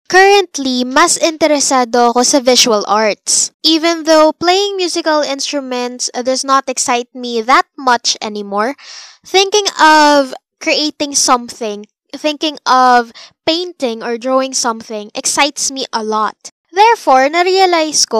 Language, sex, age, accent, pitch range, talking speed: Filipino, female, 10-29, native, 240-325 Hz, 115 wpm